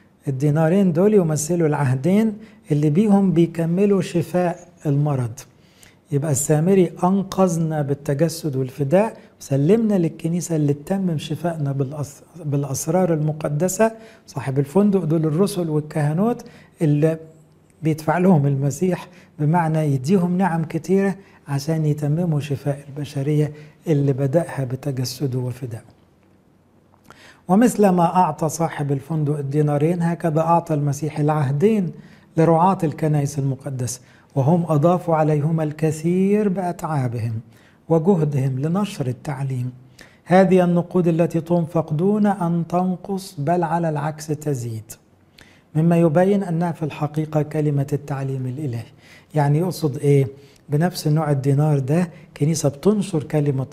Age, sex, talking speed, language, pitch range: 60-79, male, 105 wpm, English, 145-175 Hz